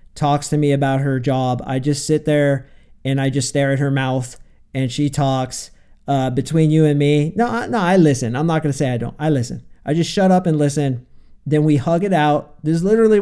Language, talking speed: English, 235 wpm